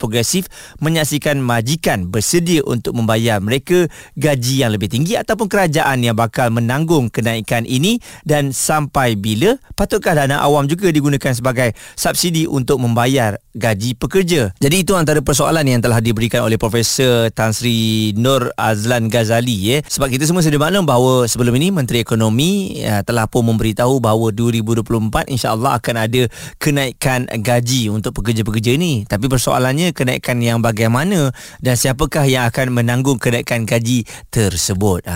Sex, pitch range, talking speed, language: male, 115-150 Hz, 145 wpm, Malay